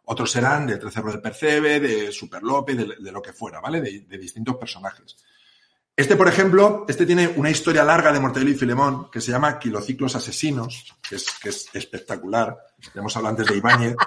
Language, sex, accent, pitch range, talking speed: Spanish, male, Spanish, 105-155 Hz, 195 wpm